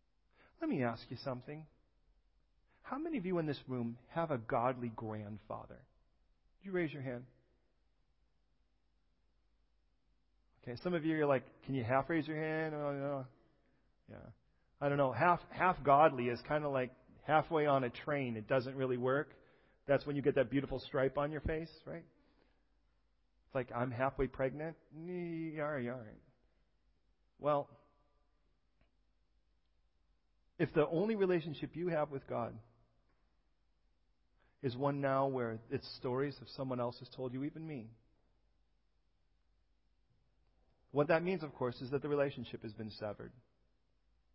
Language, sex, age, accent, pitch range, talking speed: English, male, 40-59, American, 110-145 Hz, 140 wpm